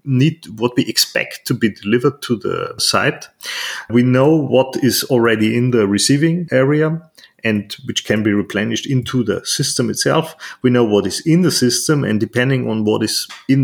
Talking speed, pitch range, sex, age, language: 180 wpm, 110-130 Hz, male, 30-49, German